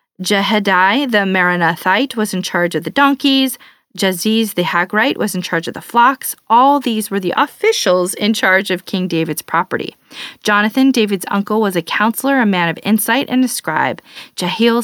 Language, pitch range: English, 180-230 Hz